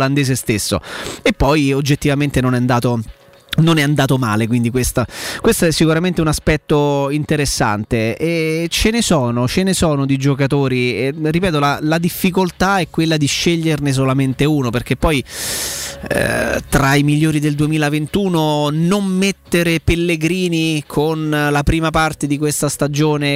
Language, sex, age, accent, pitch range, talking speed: Italian, male, 30-49, native, 130-155 Hz, 145 wpm